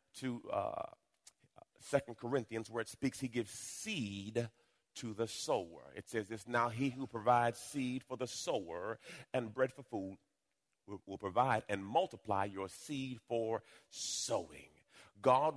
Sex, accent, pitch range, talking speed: male, American, 115-155 Hz, 145 wpm